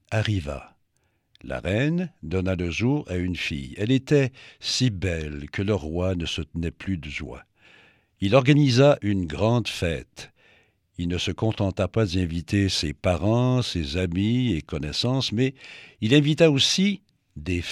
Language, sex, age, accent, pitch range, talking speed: French, male, 60-79, French, 90-135 Hz, 150 wpm